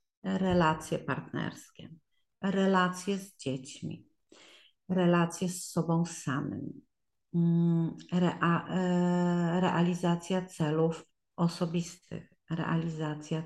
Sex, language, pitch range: female, Polish, 160-190 Hz